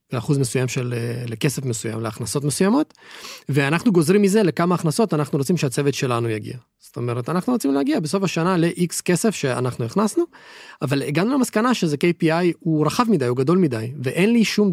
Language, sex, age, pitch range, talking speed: Hebrew, male, 30-49, 140-215 Hz, 170 wpm